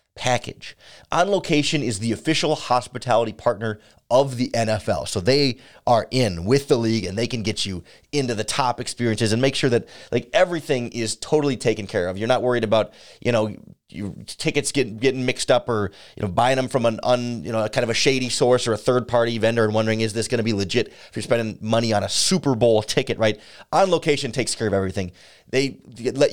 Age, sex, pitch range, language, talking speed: 30-49, male, 110-145 Hz, English, 220 wpm